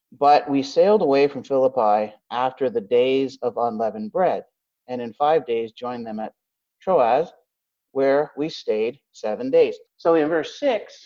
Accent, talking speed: American, 155 wpm